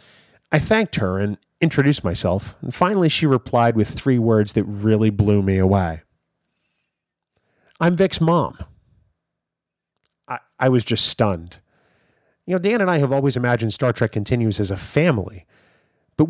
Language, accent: English, American